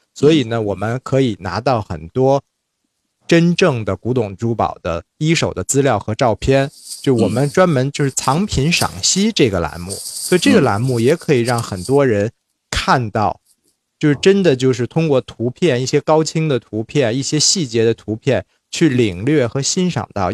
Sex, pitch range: male, 110-140 Hz